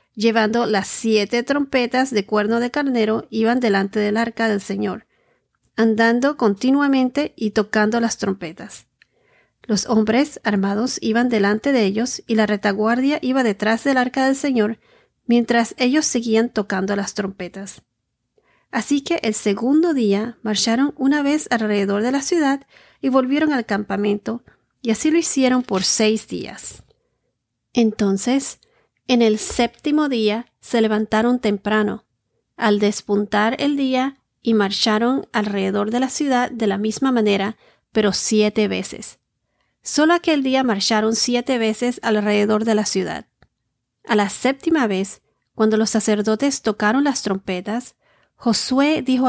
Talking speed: 135 wpm